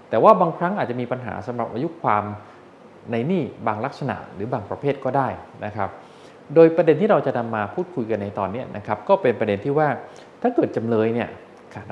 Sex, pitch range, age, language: male, 105-150 Hz, 20-39, Thai